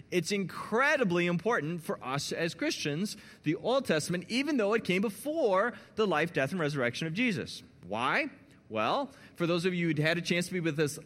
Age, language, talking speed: 30-49, English, 195 wpm